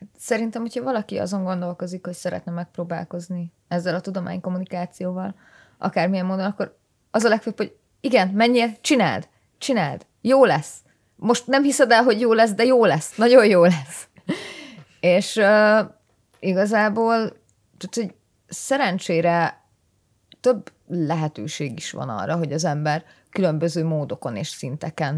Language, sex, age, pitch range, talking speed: Hungarian, female, 30-49, 150-190 Hz, 130 wpm